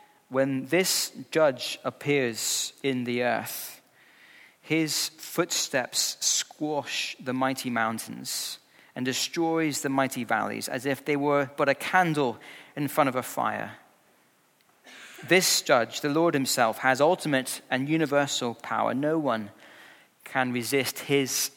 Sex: male